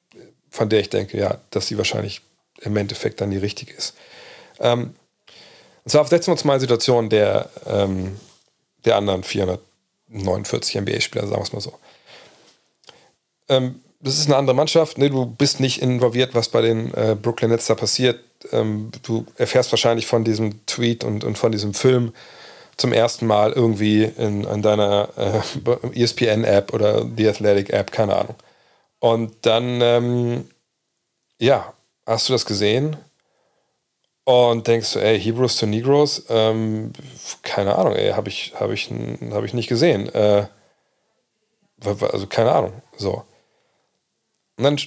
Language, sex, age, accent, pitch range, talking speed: German, male, 40-59, German, 110-130 Hz, 150 wpm